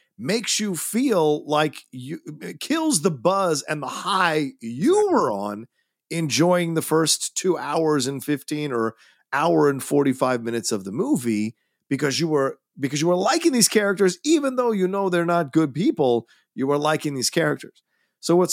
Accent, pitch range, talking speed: American, 130-185 Hz, 175 wpm